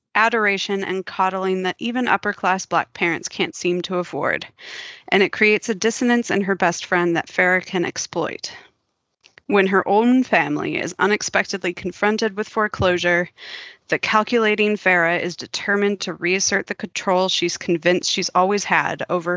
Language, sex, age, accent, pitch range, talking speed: English, female, 30-49, American, 180-215 Hz, 150 wpm